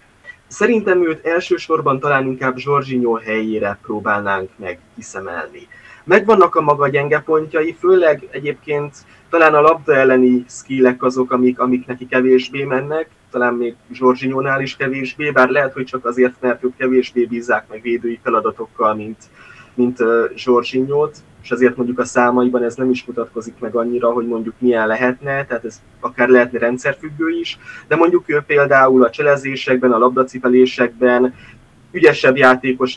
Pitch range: 120-140 Hz